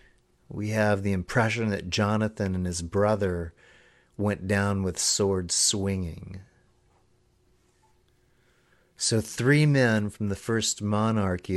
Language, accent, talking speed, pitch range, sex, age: English, American, 110 wpm, 90-115 Hz, male, 40-59